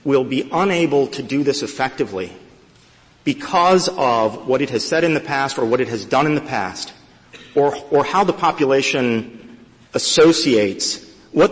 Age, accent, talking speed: 40-59, American, 160 wpm